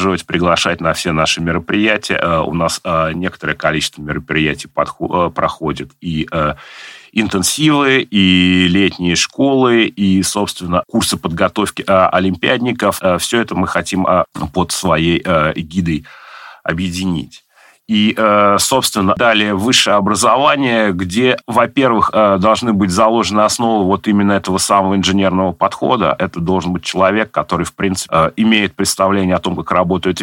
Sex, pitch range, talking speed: male, 90-110 Hz, 115 wpm